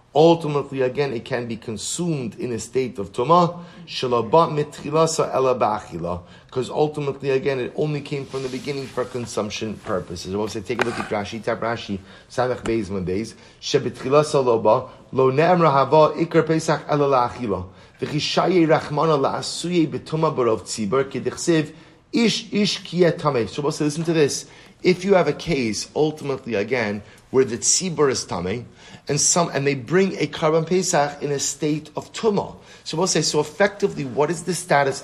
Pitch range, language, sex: 125-165 Hz, English, male